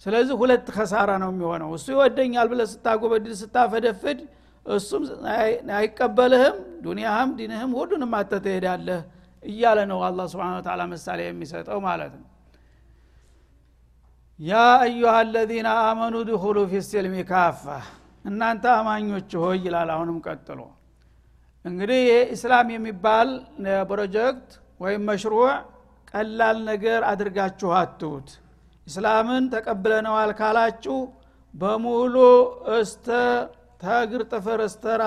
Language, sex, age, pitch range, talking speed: Amharic, male, 60-79, 180-230 Hz, 70 wpm